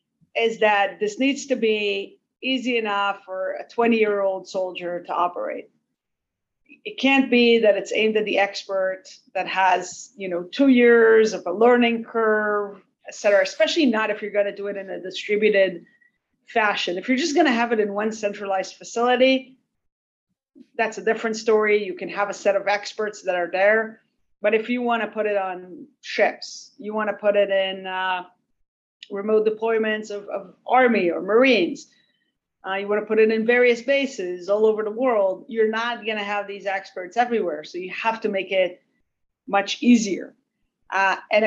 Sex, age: female, 40-59